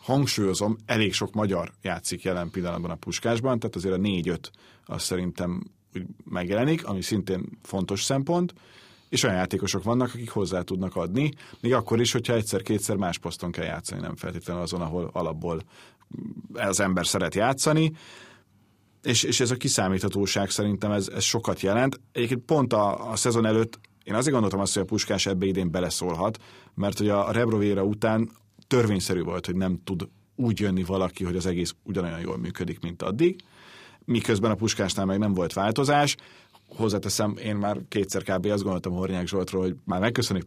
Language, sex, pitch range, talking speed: Hungarian, male, 95-115 Hz, 165 wpm